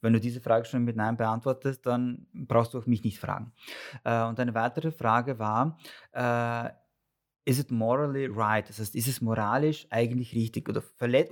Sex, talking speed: male, 185 wpm